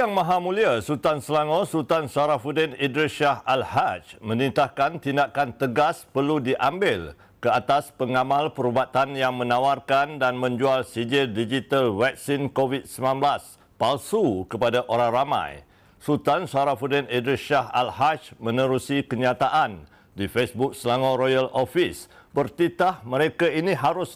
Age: 60-79